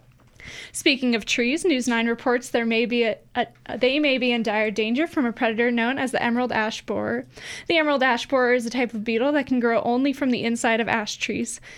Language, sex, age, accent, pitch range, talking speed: English, female, 10-29, American, 230-275 Hz, 205 wpm